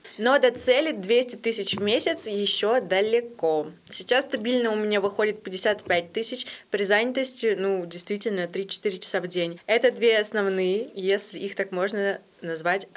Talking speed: 150 wpm